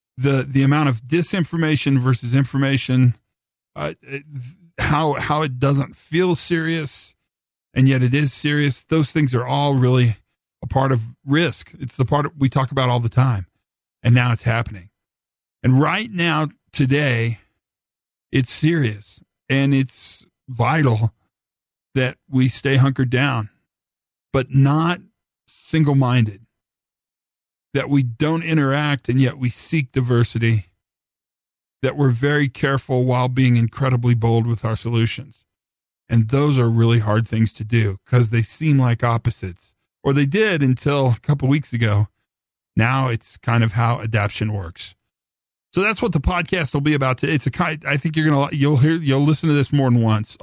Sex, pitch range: male, 115-140 Hz